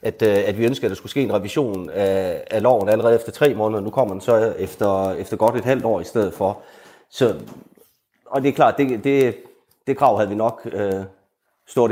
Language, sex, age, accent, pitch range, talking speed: Danish, male, 30-49, native, 105-135 Hz, 225 wpm